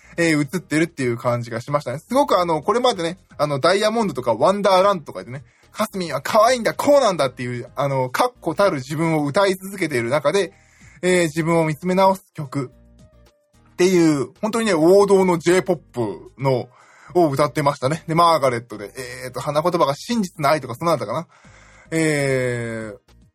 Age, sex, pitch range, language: 20-39, male, 135-195 Hz, Japanese